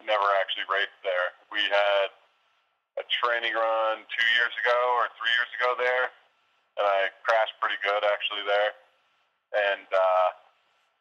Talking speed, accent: 140 wpm, American